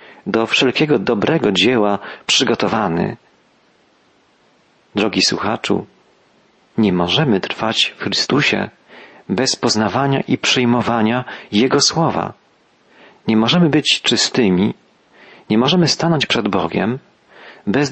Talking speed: 95 wpm